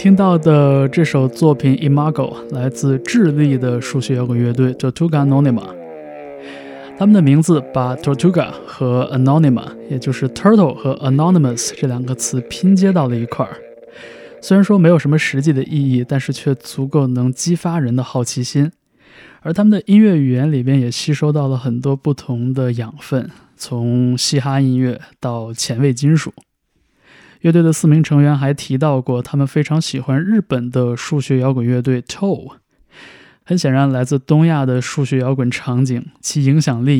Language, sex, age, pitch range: Chinese, male, 20-39, 125-150 Hz